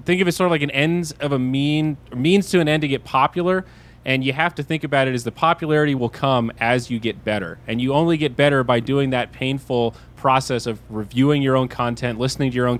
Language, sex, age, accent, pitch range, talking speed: English, male, 20-39, American, 120-155 Hz, 250 wpm